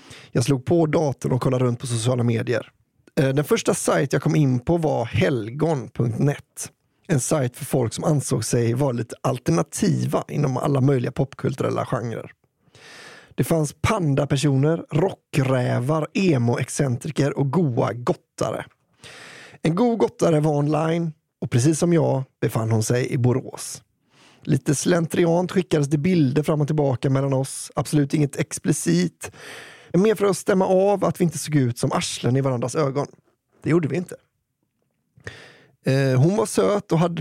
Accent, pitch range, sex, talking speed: Swedish, 130-160 Hz, male, 150 wpm